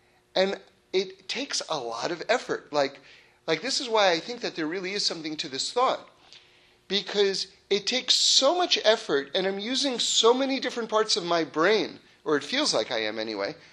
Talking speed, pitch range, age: 195 wpm, 175-250 Hz, 40-59